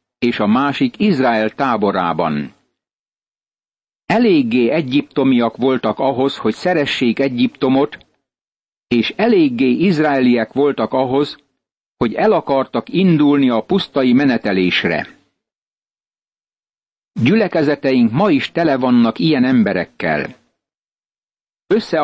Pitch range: 120-160 Hz